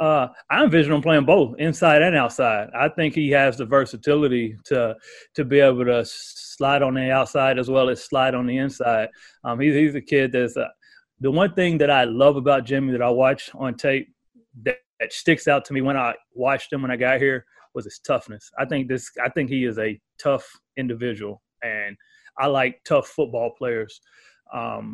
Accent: American